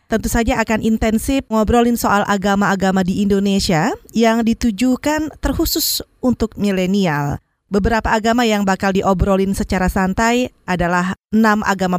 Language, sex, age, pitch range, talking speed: Indonesian, female, 20-39, 195-255 Hz, 120 wpm